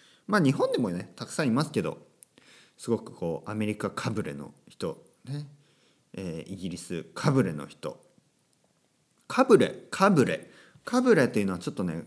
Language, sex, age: Japanese, male, 40-59